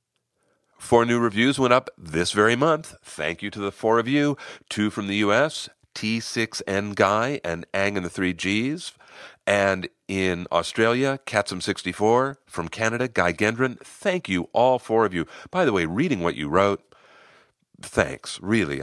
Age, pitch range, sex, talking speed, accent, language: 50-69, 85-120 Hz, male, 160 wpm, American, English